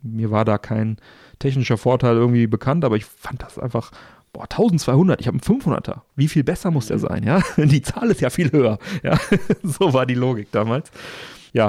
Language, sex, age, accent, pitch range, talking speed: German, male, 40-59, German, 110-130 Hz, 200 wpm